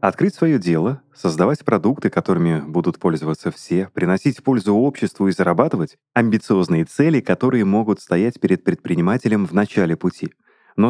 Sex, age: male, 30-49